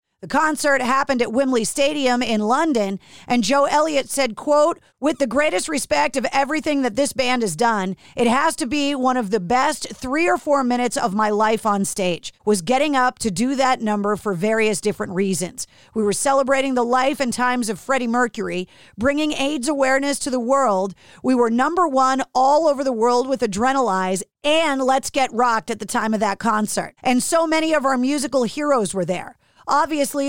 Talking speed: 195 wpm